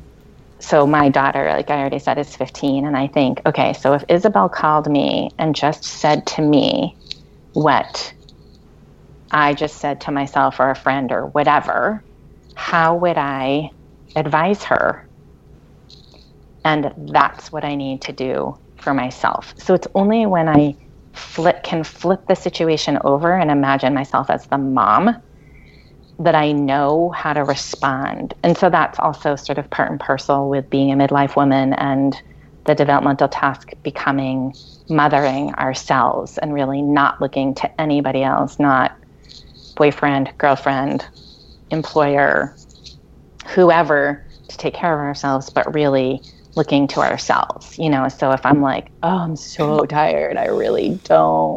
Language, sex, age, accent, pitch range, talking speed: English, female, 30-49, American, 135-155 Hz, 145 wpm